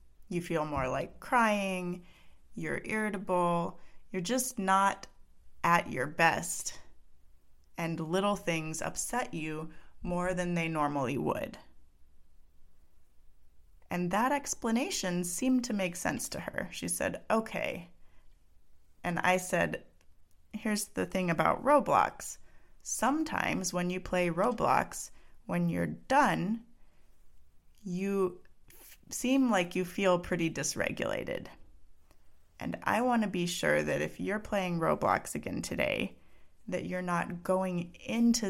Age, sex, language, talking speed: 30-49, female, English, 120 wpm